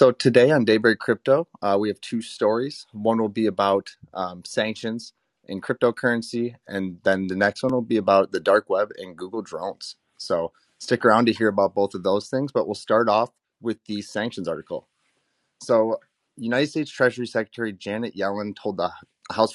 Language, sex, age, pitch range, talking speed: English, male, 30-49, 95-110 Hz, 185 wpm